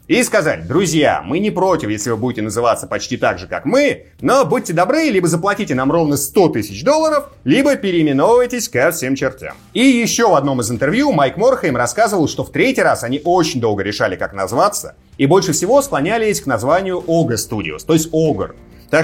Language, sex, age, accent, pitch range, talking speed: Russian, male, 30-49, native, 140-235 Hz, 190 wpm